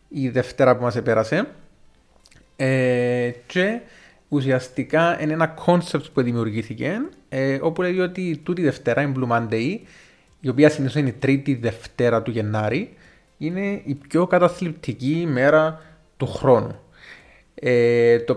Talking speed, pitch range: 130 wpm, 120-160 Hz